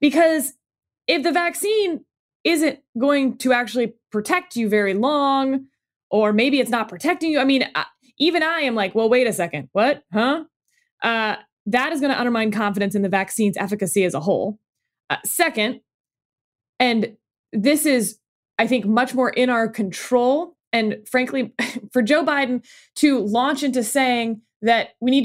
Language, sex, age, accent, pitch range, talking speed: English, female, 20-39, American, 220-290 Hz, 160 wpm